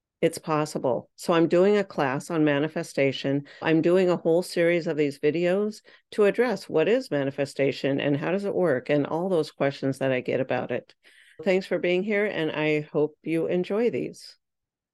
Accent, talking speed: American, 185 wpm